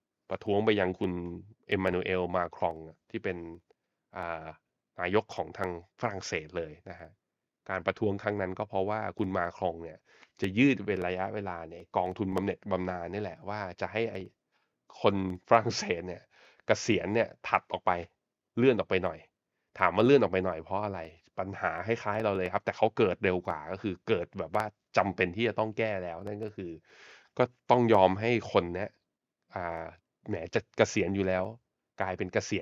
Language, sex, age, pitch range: Thai, male, 20-39, 90-105 Hz